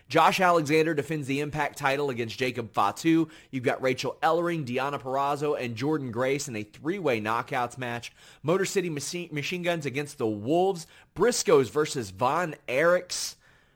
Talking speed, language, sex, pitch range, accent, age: 150 wpm, English, male, 120-150 Hz, American, 30-49